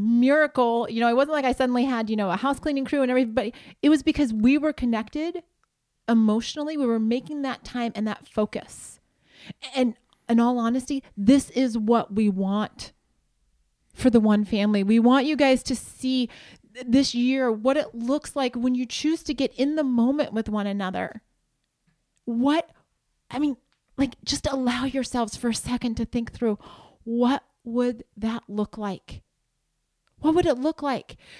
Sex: female